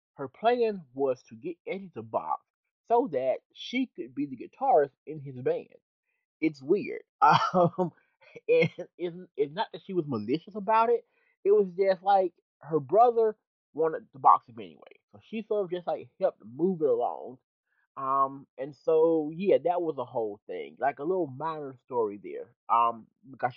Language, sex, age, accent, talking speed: English, male, 30-49, American, 175 wpm